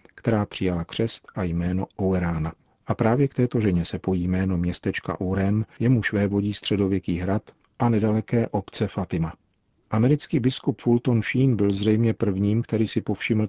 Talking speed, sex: 155 wpm, male